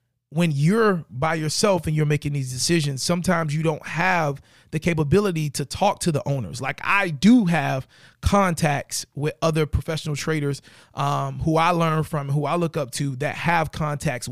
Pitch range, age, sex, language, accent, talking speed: 140-165 Hz, 30-49, male, English, American, 175 wpm